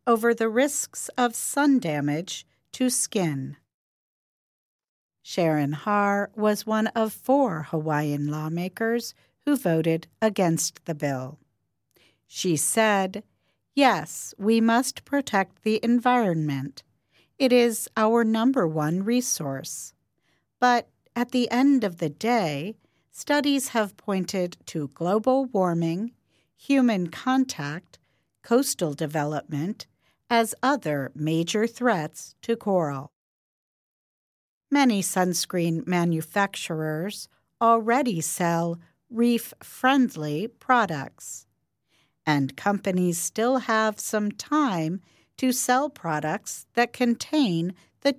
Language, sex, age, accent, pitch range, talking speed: English, female, 50-69, American, 160-235 Hz, 95 wpm